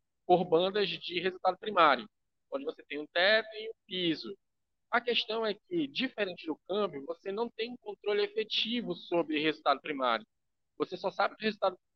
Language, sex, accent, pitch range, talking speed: Portuguese, male, Brazilian, 170-235 Hz, 175 wpm